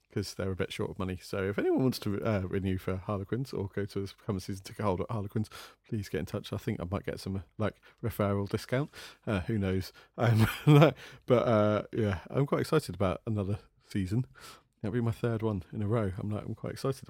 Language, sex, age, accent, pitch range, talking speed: English, male, 30-49, British, 100-115 Hz, 230 wpm